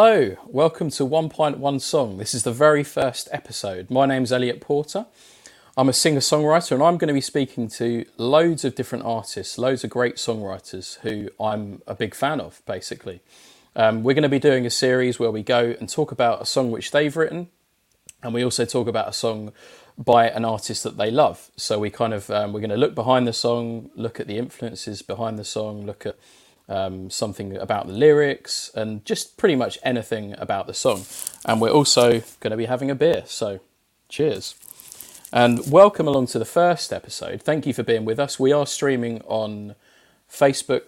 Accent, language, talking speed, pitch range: British, English, 200 wpm, 110-140 Hz